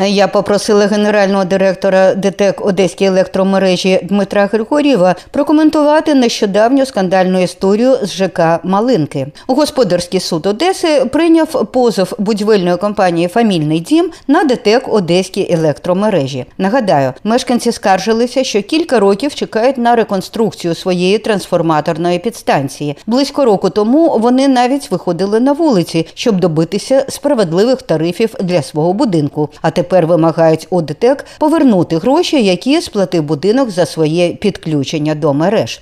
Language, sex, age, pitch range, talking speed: Ukrainian, female, 50-69, 175-250 Hz, 115 wpm